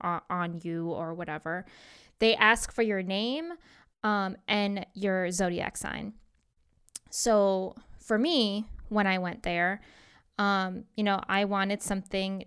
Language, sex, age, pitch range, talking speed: English, female, 10-29, 180-205 Hz, 130 wpm